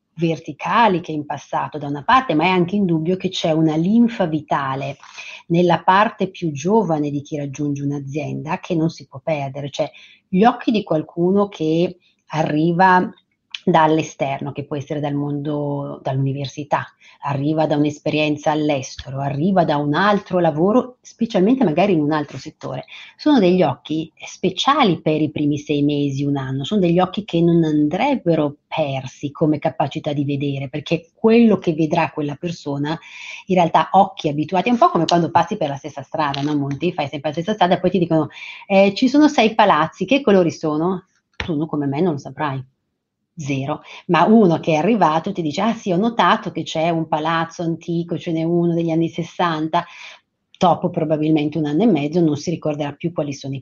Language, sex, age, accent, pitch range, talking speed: Italian, female, 40-59, native, 150-185 Hz, 180 wpm